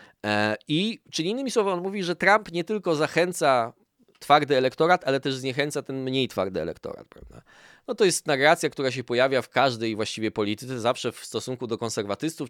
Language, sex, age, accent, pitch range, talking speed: Polish, male, 20-39, native, 120-165 Hz, 175 wpm